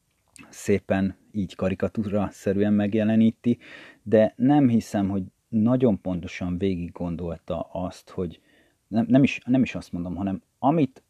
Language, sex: Hungarian, male